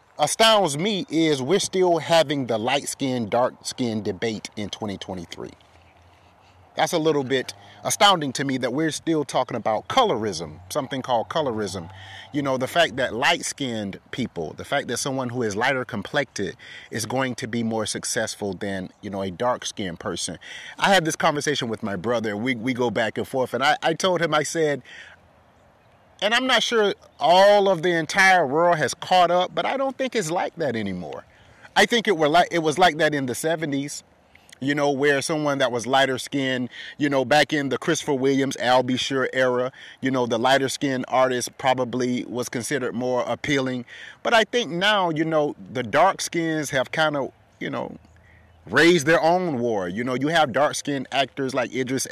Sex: male